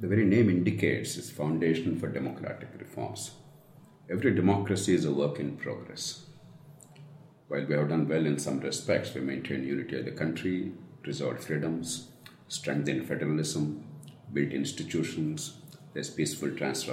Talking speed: 140 wpm